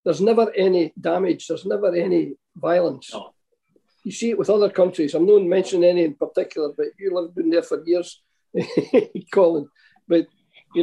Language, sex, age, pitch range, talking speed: English, male, 50-69, 165-210 Hz, 160 wpm